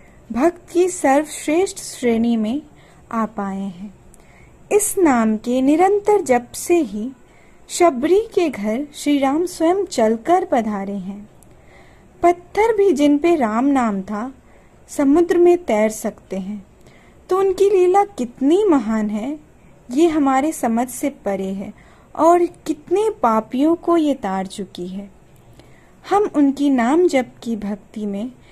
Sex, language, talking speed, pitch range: female, Hindi, 130 wpm, 215-345 Hz